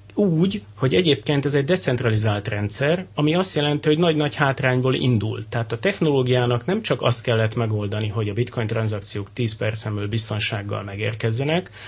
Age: 30-49